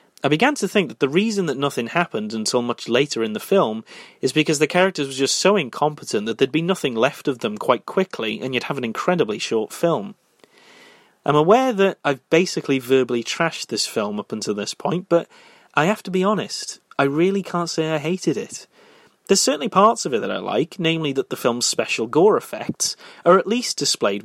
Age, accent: 30-49, British